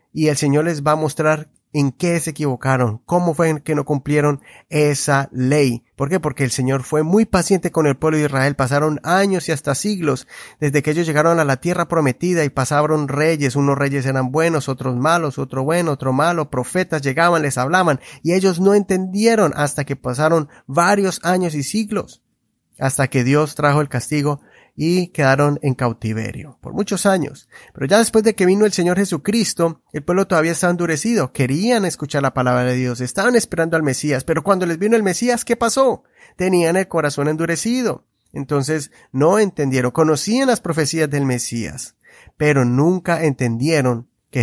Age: 30-49